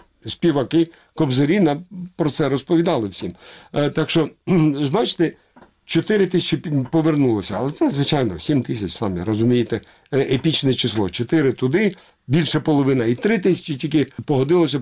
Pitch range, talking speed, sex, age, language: 135-170 Hz, 115 wpm, male, 50-69, Ukrainian